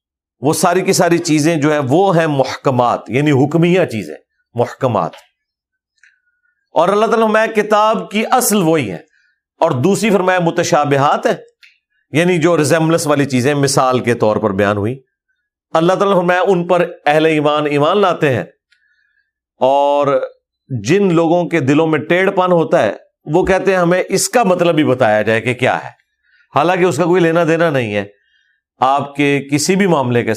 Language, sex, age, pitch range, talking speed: Urdu, male, 40-59, 120-175 Hz, 170 wpm